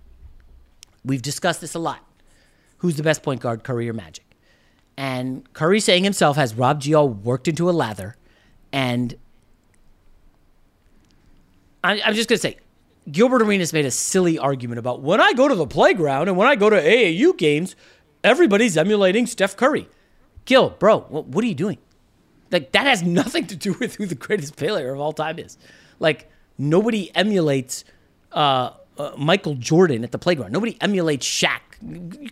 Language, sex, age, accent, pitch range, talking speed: English, male, 40-59, American, 125-200 Hz, 165 wpm